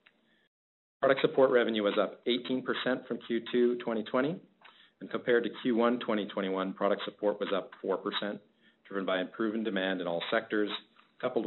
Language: English